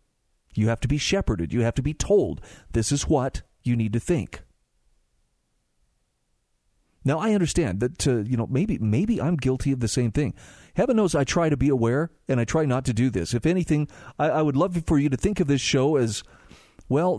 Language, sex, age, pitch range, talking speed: English, male, 40-59, 125-165 Hz, 215 wpm